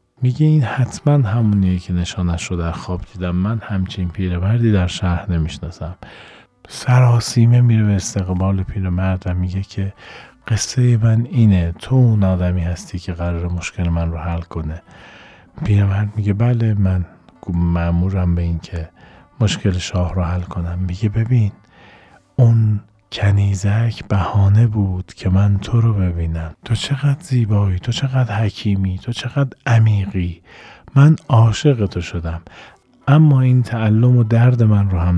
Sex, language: male, Persian